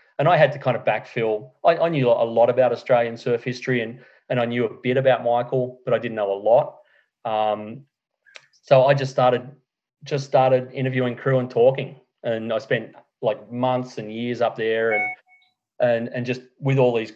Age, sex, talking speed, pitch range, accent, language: 30-49, male, 200 wpm, 120-135 Hz, Australian, English